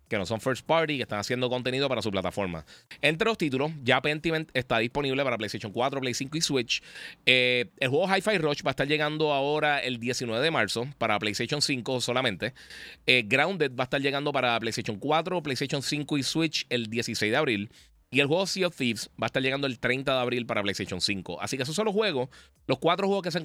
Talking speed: 230 wpm